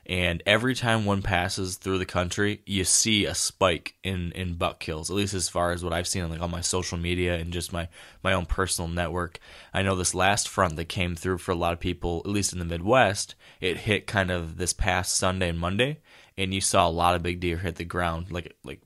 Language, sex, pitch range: English, male, 85-100 Hz